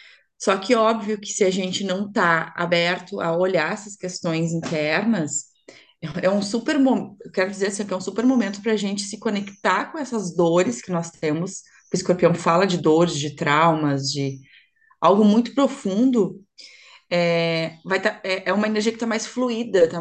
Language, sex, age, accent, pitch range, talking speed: Portuguese, female, 20-39, Brazilian, 165-210 Hz, 170 wpm